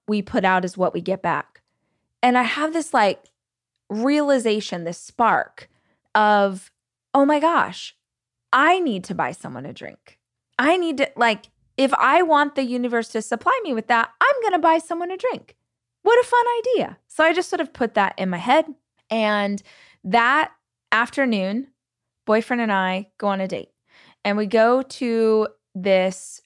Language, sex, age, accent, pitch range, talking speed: English, female, 20-39, American, 185-260 Hz, 175 wpm